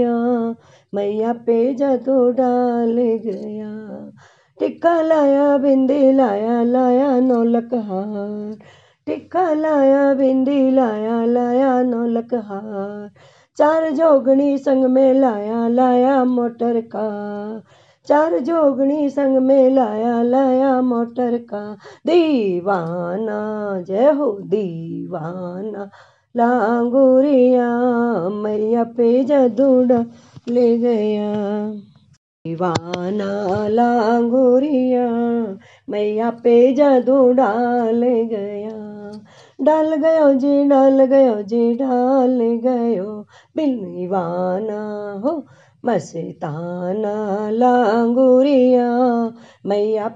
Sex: female